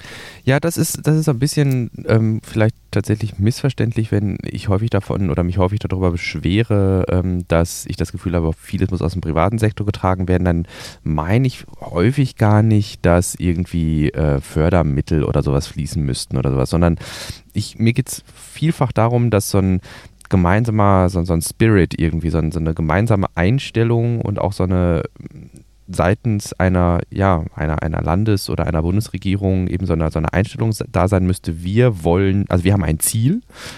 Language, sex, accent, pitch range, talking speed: German, male, German, 90-115 Hz, 175 wpm